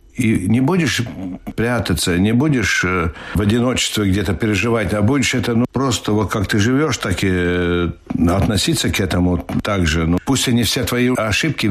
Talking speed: 170 wpm